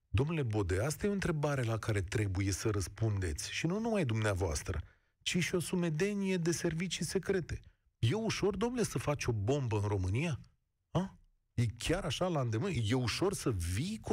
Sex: male